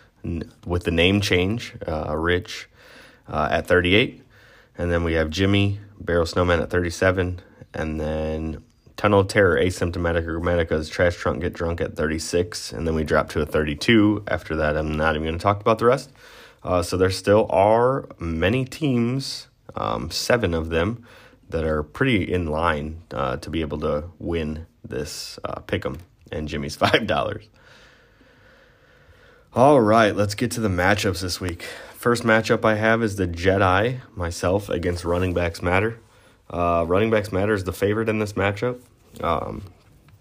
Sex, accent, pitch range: male, American, 85-110 Hz